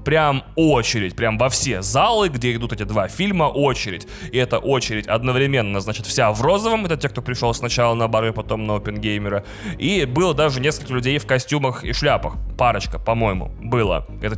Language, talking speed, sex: Russian, 180 wpm, male